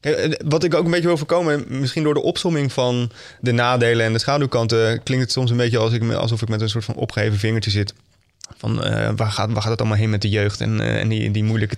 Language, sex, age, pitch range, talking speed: Dutch, male, 20-39, 105-125 Hz, 245 wpm